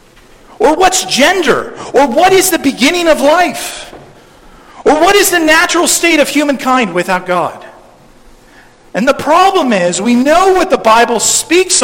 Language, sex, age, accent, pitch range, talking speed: English, male, 40-59, American, 160-245 Hz, 150 wpm